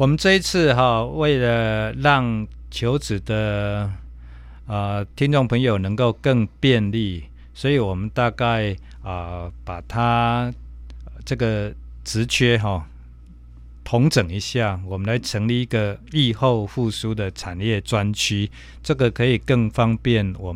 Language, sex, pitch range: Chinese, male, 95-120 Hz